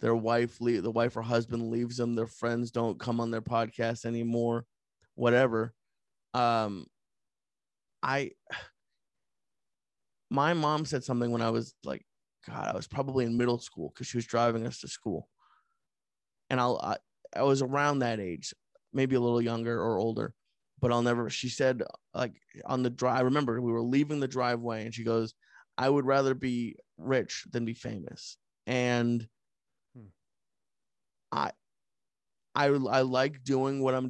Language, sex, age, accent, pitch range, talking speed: English, male, 20-39, American, 115-130 Hz, 160 wpm